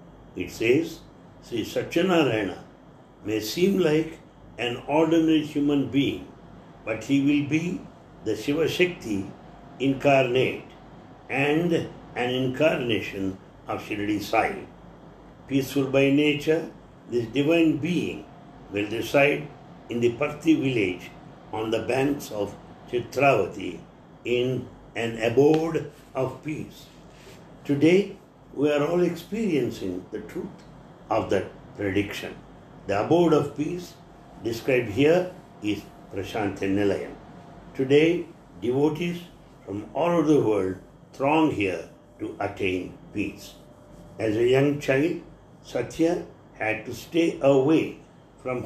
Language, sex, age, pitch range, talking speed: English, male, 60-79, 115-160 Hz, 110 wpm